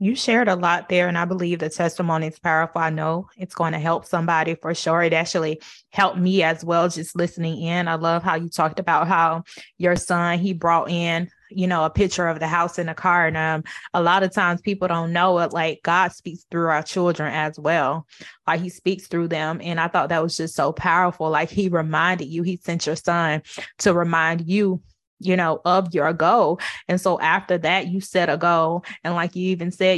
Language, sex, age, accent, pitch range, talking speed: English, female, 20-39, American, 165-185 Hz, 225 wpm